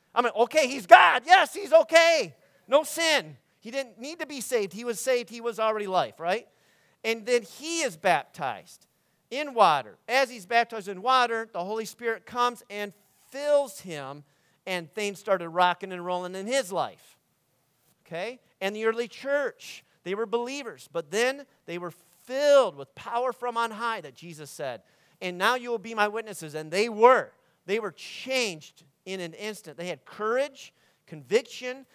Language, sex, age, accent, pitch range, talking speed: English, male, 40-59, American, 160-240 Hz, 175 wpm